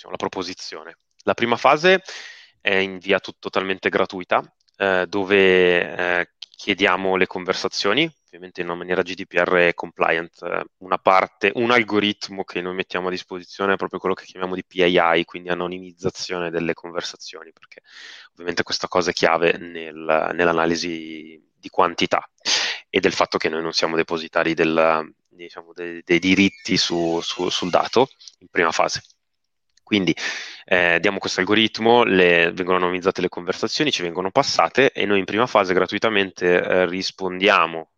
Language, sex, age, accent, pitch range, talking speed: Italian, male, 20-39, native, 85-100 Hz, 140 wpm